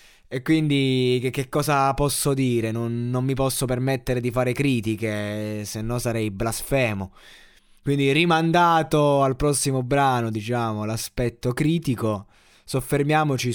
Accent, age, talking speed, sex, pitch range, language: native, 20-39, 120 wpm, male, 110-130 Hz, Italian